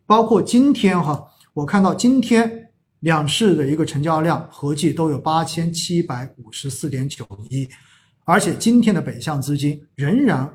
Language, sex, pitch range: Chinese, male, 135-185 Hz